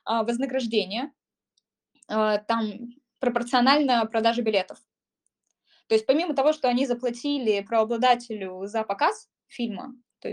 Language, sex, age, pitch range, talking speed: Russian, female, 20-39, 210-255 Hz, 100 wpm